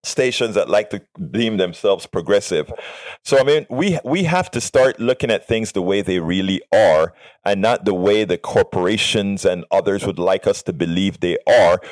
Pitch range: 105-150 Hz